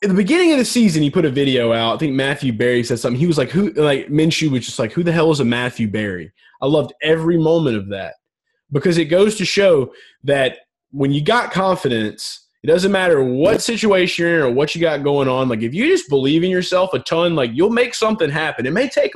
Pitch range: 120-175 Hz